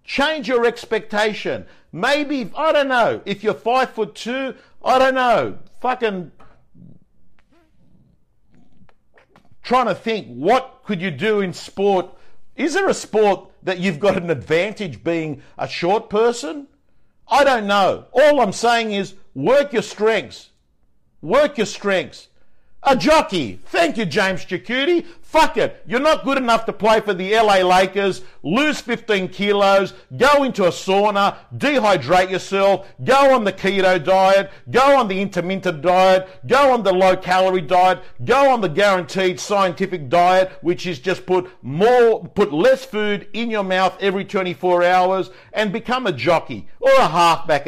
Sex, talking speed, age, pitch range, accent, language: male, 150 wpm, 50-69, 185-245 Hz, Australian, English